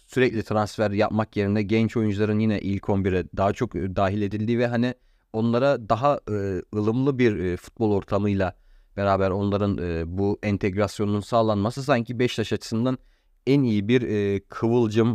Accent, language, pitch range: native, Turkish, 95-115 Hz